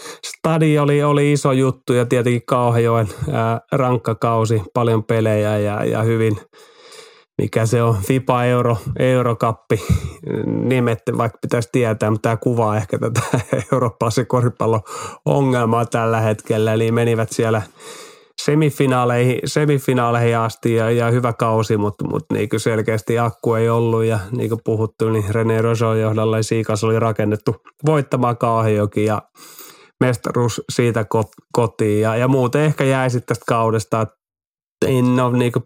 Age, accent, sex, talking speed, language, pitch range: 30-49, native, male, 135 wpm, Finnish, 110-125 Hz